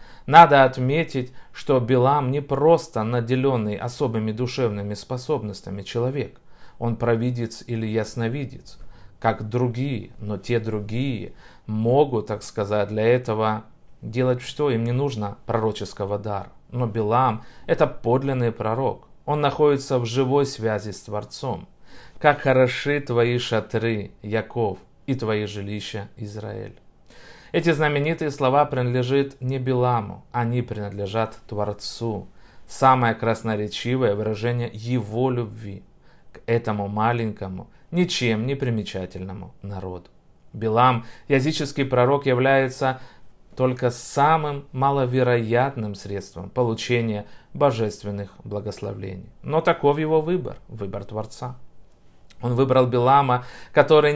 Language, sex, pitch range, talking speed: Russian, male, 110-135 Hz, 105 wpm